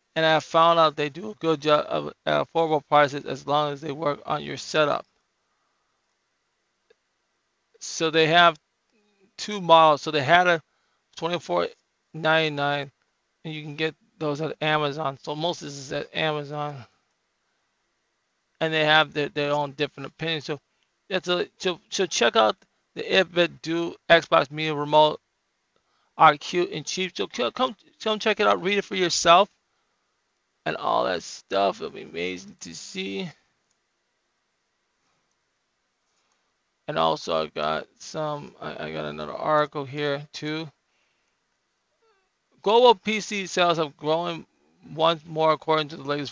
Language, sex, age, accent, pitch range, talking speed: English, male, 20-39, American, 145-170 Hz, 145 wpm